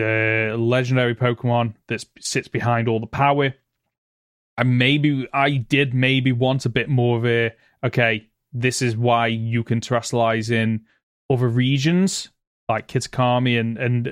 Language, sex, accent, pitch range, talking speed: English, male, British, 115-130 Hz, 145 wpm